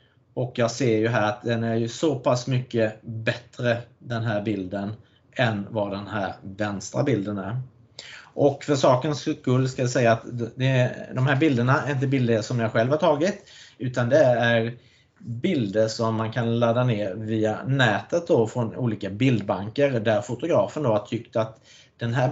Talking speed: 180 wpm